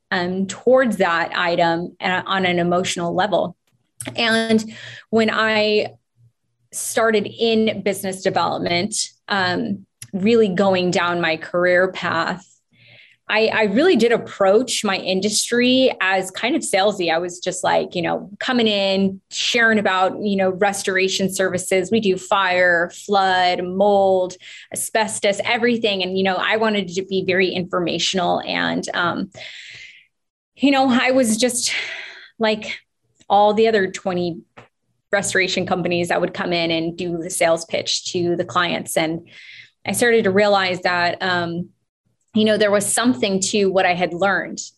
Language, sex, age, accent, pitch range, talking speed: English, female, 20-39, American, 180-215 Hz, 140 wpm